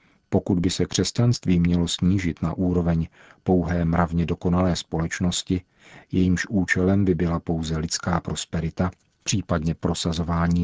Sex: male